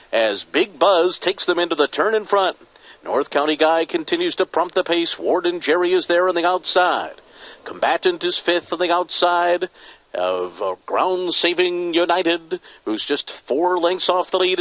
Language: English